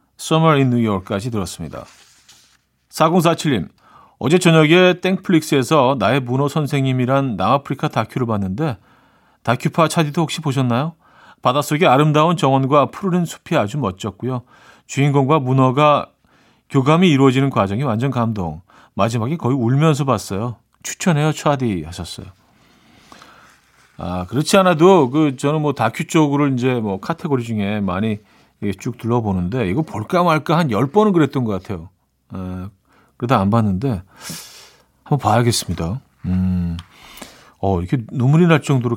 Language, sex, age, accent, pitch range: Korean, male, 40-59, native, 95-150 Hz